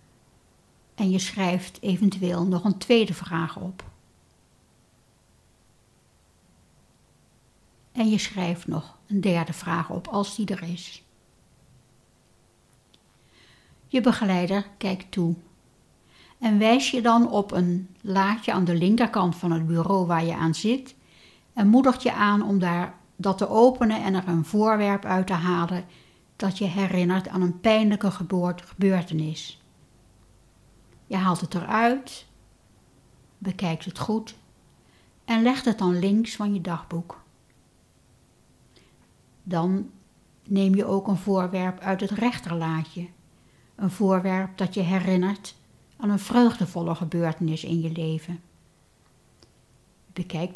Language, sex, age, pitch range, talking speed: Dutch, female, 60-79, 175-205 Hz, 120 wpm